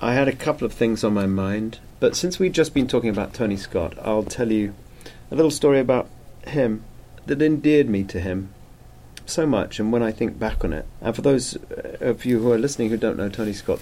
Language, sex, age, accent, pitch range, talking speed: English, male, 40-59, British, 100-125 Hz, 235 wpm